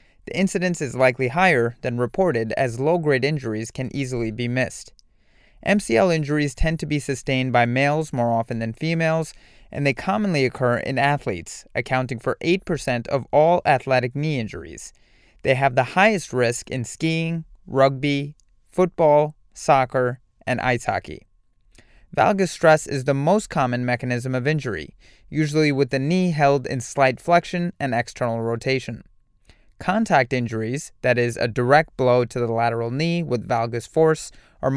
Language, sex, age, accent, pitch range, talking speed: English, male, 30-49, American, 120-155 Hz, 150 wpm